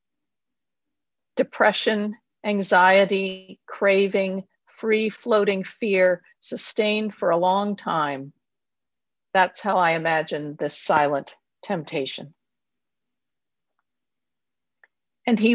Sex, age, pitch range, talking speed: female, 50-69, 185-220 Hz, 75 wpm